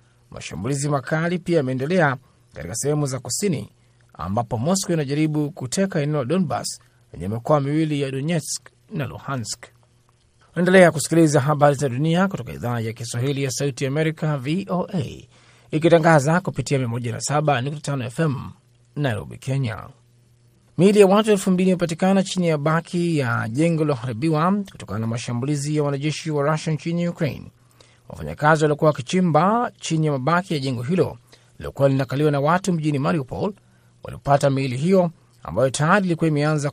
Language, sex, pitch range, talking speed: Swahili, male, 125-165 Hz, 135 wpm